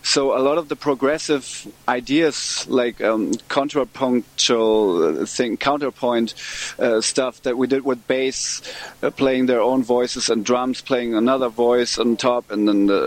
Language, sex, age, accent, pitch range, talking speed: English, male, 30-49, German, 115-140 Hz, 150 wpm